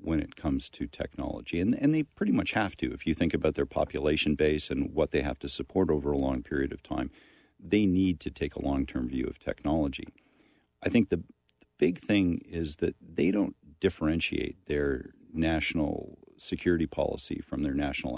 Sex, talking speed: male, 190 wpm